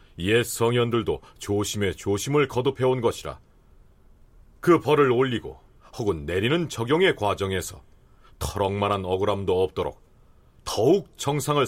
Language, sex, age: Korean, male, 40-59